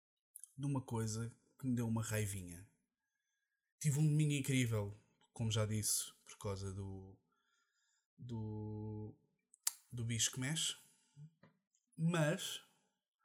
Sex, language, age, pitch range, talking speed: male, Portuguese, 20-39, 110-160 Hz, 110 wpm